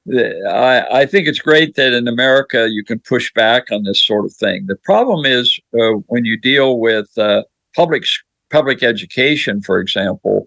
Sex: male